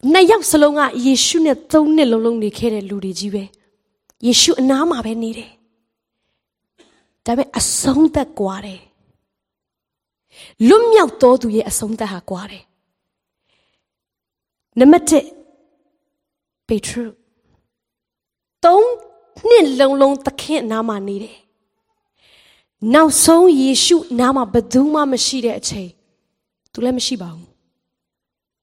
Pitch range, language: 205-275 Hz, English